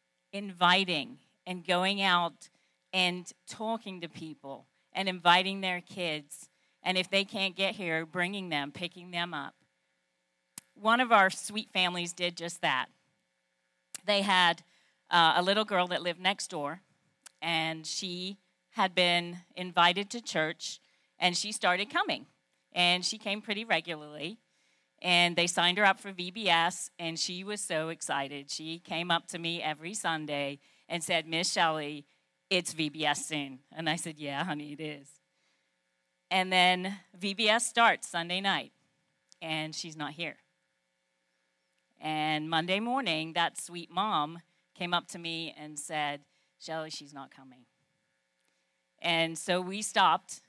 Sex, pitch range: female, 145-185 Hz